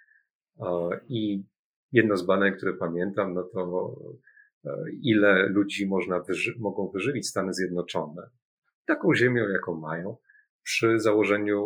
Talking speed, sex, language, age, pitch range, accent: 115 wpm, male, Polish, 40-59, 90-125 Hz, native